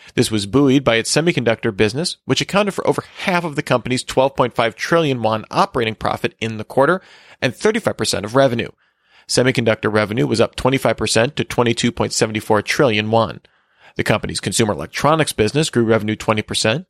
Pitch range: 115-155 Hz